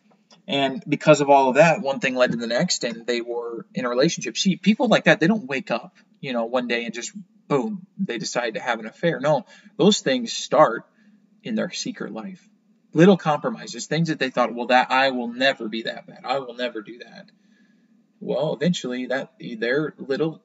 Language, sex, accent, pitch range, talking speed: English, male, American, 130-215 Hz, 210 wpm